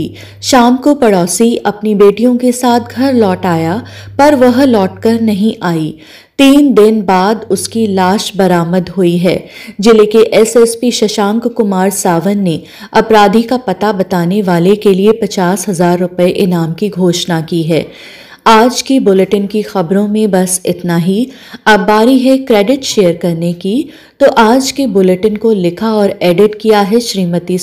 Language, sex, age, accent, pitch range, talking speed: Hindi, female, 30-49, native, 185-230 Hz, 150 wpm